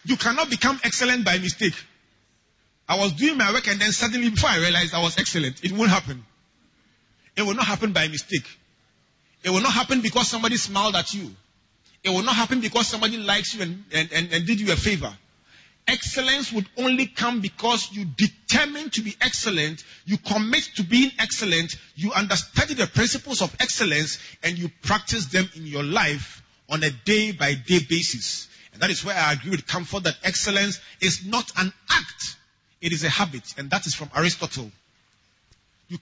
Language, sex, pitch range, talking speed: English, male, 150-210 Hz, 180 wpm